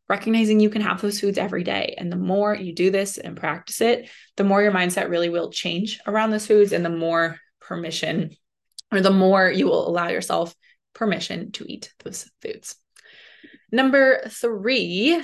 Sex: female